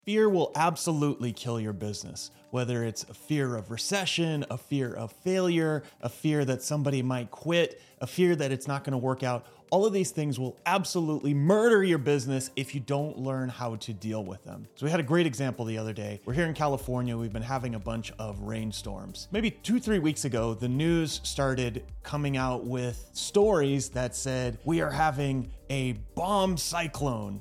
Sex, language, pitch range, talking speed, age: male, English, 120-150 Hz, 195 wpm, 30-49